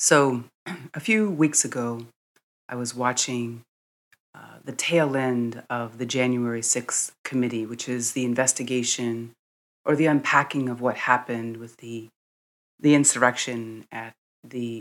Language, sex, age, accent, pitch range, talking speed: English, female, 30-49, American, 115-145 Hz, 135 wpm